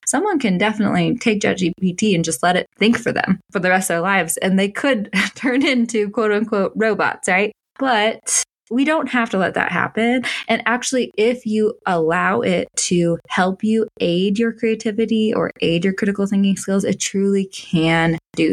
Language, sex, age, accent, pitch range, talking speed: English, female, 20-39, American, 185-230 Hz, 190 wpm